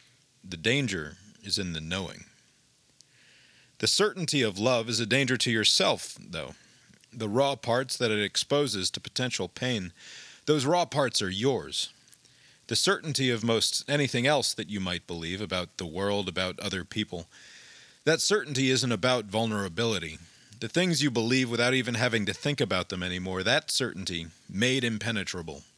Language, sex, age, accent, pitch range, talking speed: English, male, 40-59, American, 105-140 Hz, 155 wpm